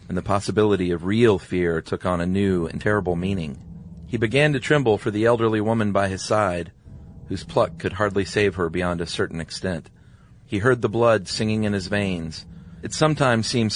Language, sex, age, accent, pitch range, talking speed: English, male, 40-59, American, 90-115 Hz, 195 wpm